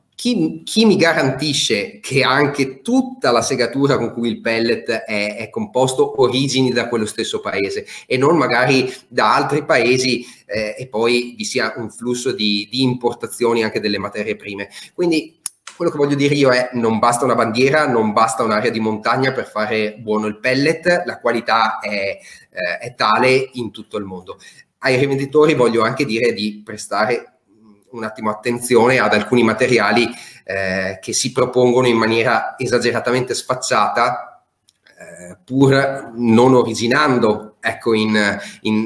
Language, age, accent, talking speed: Italian, 30-49, native, 155 wpm